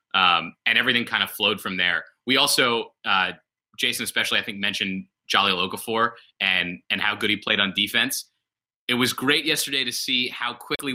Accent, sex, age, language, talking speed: American, male, 20-39, English, 185 wpm